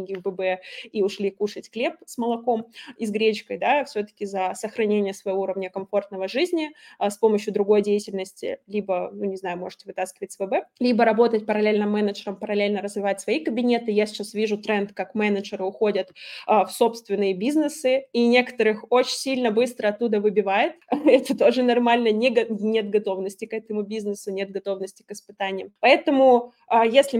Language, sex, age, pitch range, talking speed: Russian, female, 20-39, 200-240 Hz, 160 wpm